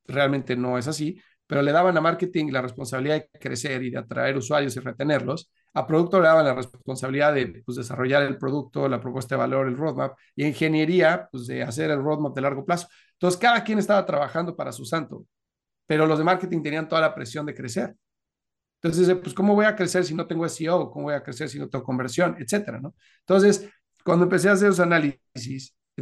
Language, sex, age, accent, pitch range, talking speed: English, male, 40-59, Mexican, 135-165 Hz, 210 wpm